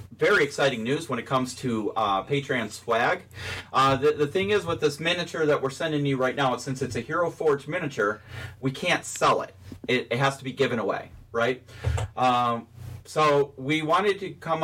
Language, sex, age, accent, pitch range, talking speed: English, male, 40-59, American, 115-150 Hz, 195 wpm